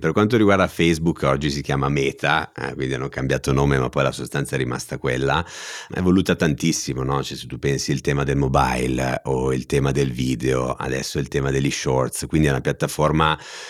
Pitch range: 70-85 Hz